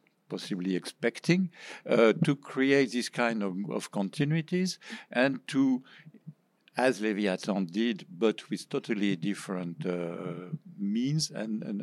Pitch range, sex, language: 95-135 Hz, male, English